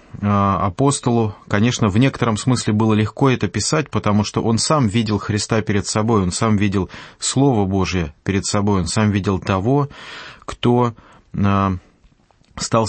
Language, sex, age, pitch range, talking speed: English, male, 20-39, 100-120 Hz, 140 wpm